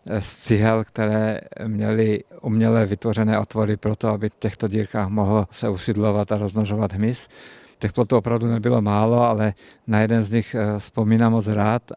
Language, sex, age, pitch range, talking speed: Czech, male, 50-69, 105-115 Hz, 160 wpm